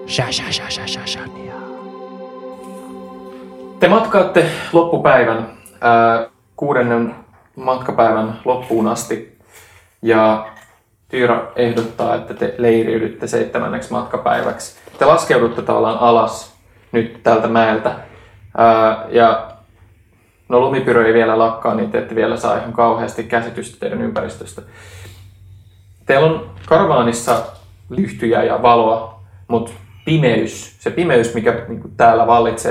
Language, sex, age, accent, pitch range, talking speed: Finnish, male, 20-39, native, 100-120 Hz, 90 wpm